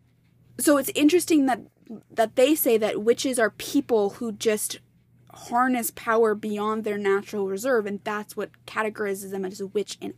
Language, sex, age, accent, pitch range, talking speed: English, female, 20-39, American, 215-275 Hz, 165 wpm